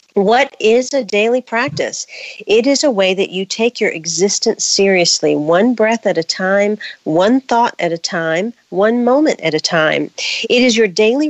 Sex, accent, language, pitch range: female, American, English, 180-235 Hz